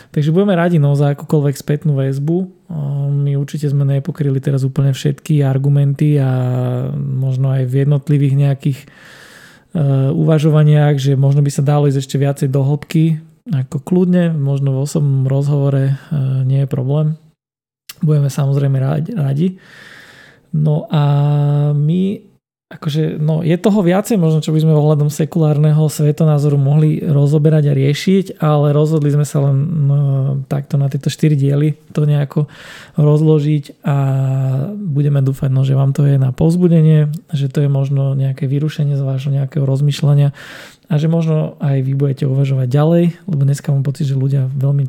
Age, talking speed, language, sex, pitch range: 20-39, 155 wpm, Slovak, male, 140-155 Hz